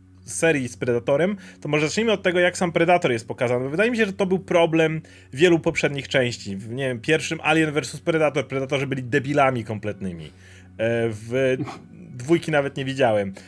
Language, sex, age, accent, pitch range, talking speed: Polish, male, 30-49, native, 125-175 Hz, 175 wpm